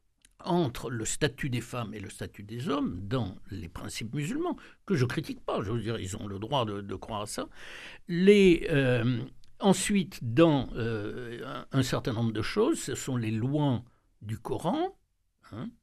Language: French